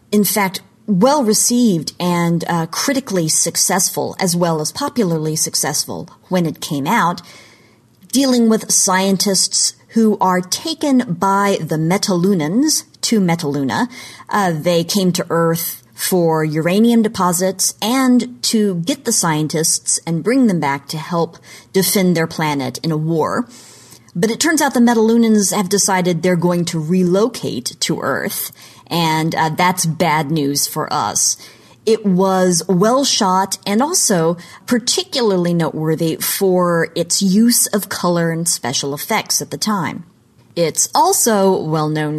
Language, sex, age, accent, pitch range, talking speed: English, female, 40-59, American, 160-210 Hz, 135 wpm